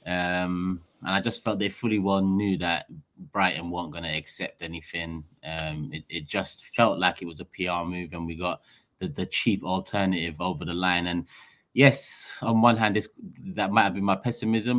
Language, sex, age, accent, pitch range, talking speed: English, male, 20-39, British, 90-110 Hz, 200 wpm